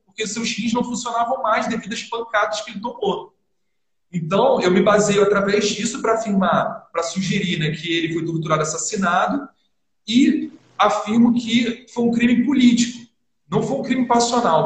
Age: 40-59